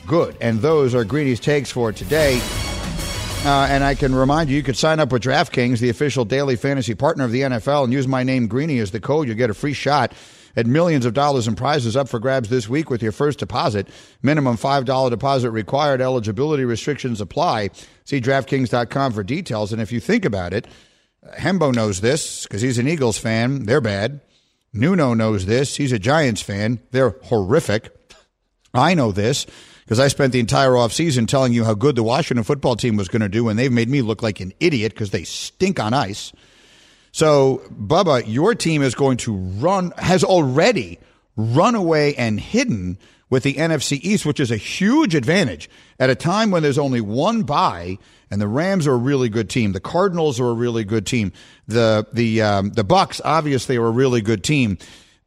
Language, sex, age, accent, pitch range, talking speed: English, male, 50-69, American, 115-145 Hz, 200 wpm